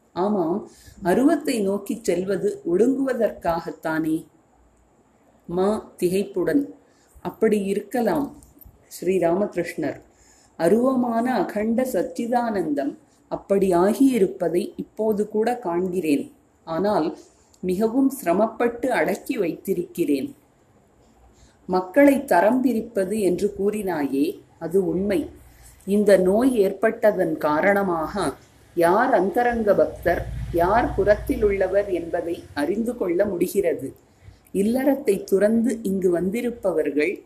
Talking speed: 75 wpm